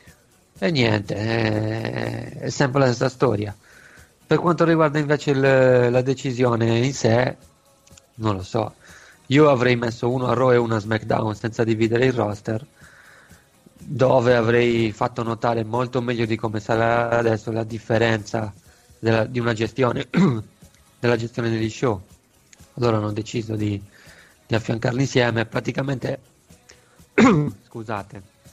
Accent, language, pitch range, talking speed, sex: native, Italian, 105-120 Hz, 130 wpm, male